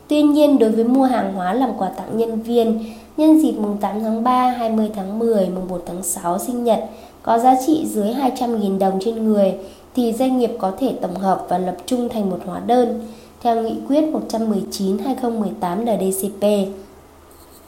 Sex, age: female, 20-39